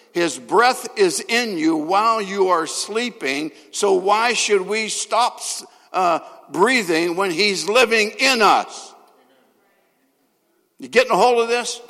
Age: 60-79